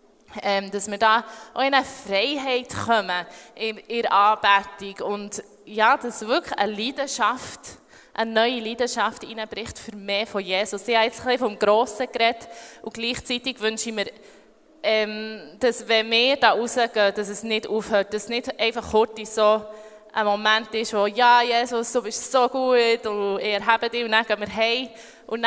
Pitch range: 210-235 Hz